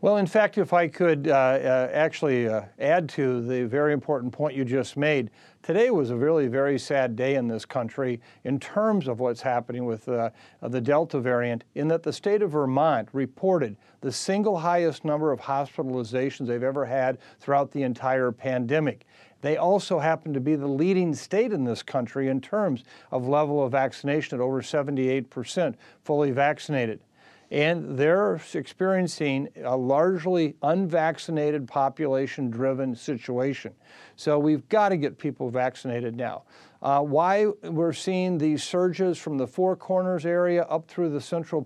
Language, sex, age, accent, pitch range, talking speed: English, male, 50-69, American, 130-160 Hz, 160 wpm